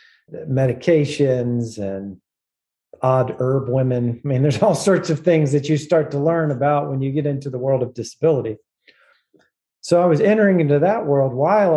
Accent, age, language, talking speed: American, 40-59, English, 175 wpm